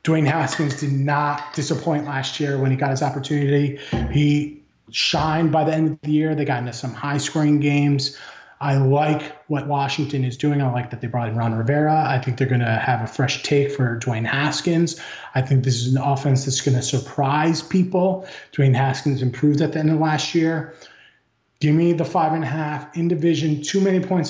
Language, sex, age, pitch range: English, male, 30-49, 140-165 Hz